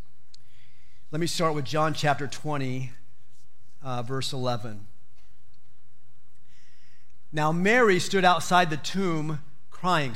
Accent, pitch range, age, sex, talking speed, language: American, 120-185 Hz, 40-59, male, 100 wpm, English